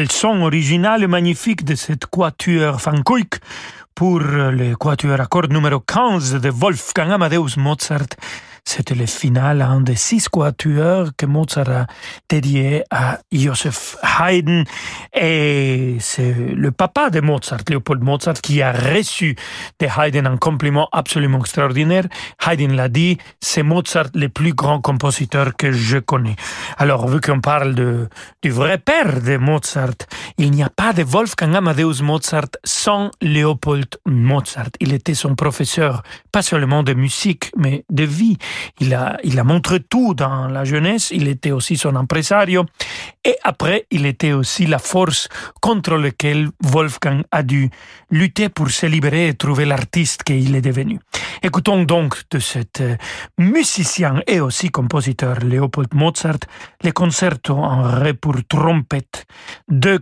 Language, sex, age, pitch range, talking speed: French, male, 40-59, 135-170 Hz, 150 wpm